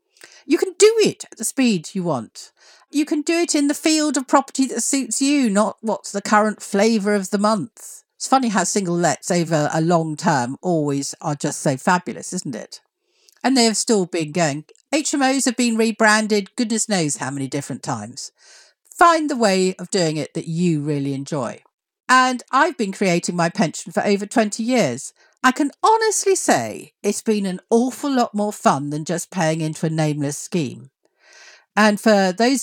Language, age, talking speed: English, 50-69, 190 wpm